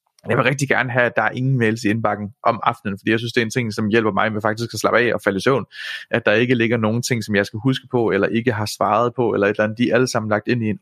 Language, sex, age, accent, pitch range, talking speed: Danish, male, 30-49, native, 105-125 Hz, 340 wpm